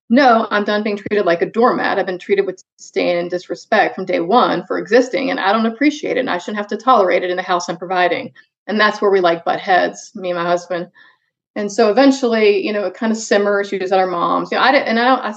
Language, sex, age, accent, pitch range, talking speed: English, female, 30-49, American, 180-225 Hz, 275 wpm